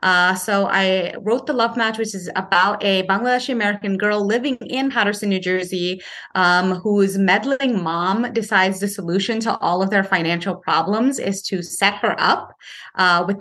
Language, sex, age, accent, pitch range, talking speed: English, female, 30-49, American, 180-220 Hz, 175 wpm